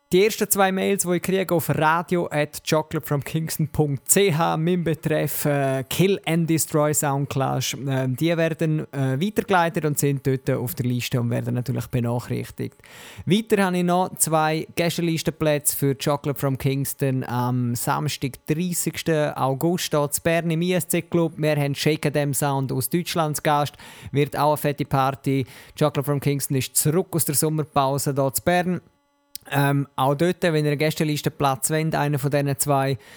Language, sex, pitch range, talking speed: English, male, 135-165 Hz, 165 wpm